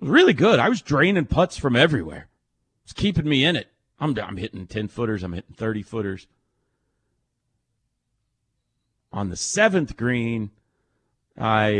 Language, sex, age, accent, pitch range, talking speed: English, male, 40-59, American, 115-175 Hz, 135 wpm